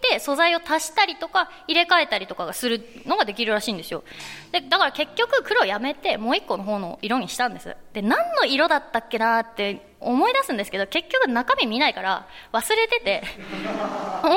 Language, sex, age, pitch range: Japanese, female, 20-39, 215-360 Hz